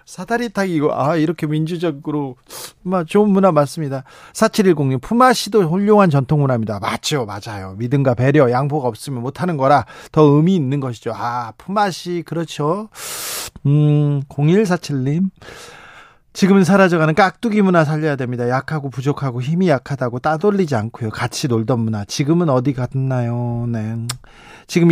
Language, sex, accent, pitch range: Korean, male, native, 125-175 Hz